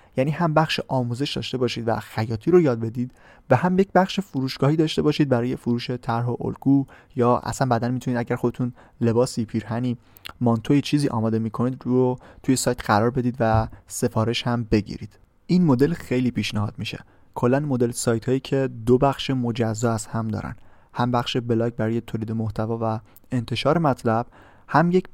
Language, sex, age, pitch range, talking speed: Persian, male, 30-49, 115-135 Hz, 170 wpm